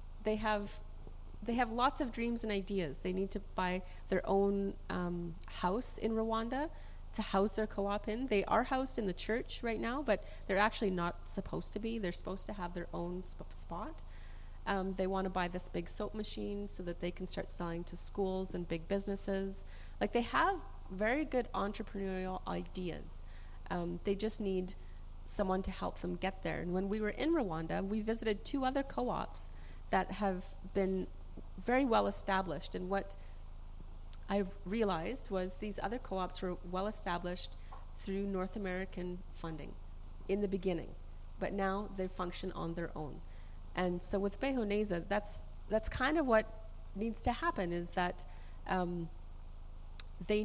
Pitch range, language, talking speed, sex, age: 165-210 Hz, English, 170 wpm, female, 30-49